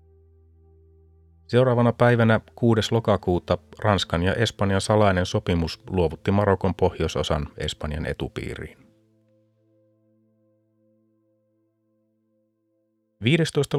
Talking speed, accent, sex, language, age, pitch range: 65 wpm, native, male, Finnish, 30-49, 90-120 Hz